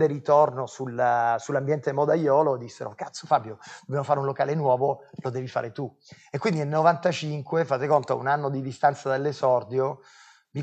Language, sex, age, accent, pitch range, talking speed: Italian, male, 30-49, native, 130-175 Hz, 165 wpm